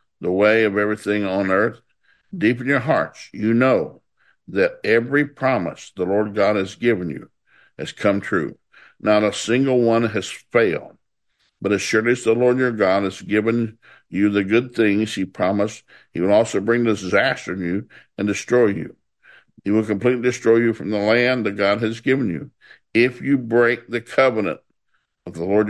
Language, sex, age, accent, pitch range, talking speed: English, male, 60-79, American, 100-125 Hz, 180 wpm